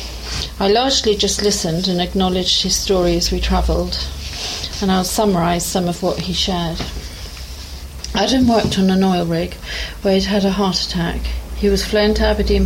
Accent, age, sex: British, 40-59, female